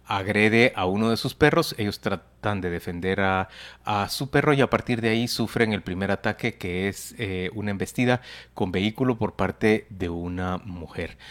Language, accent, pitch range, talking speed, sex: Spanish, Mexican, 100-135 Hz, 185 wpm, male